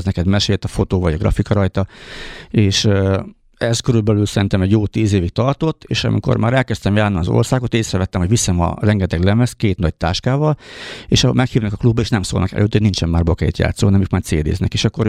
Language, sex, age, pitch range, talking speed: Hungarian, male, 50-69, 90-110 Hz, 205 wpm